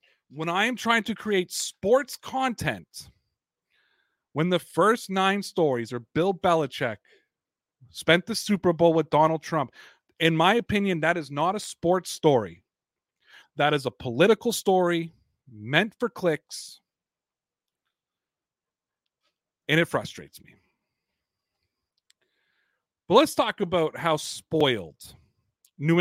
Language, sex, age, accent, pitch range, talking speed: English, male, 40-59, American, 145-195 Hz, 120 wpm